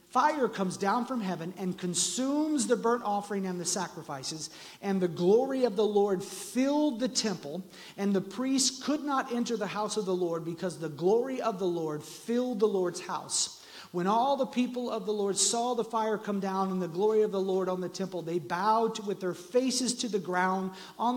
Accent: American